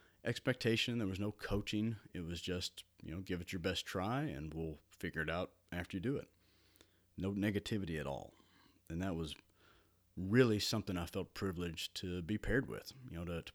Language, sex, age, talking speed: English, male, 30-49, 195 wpm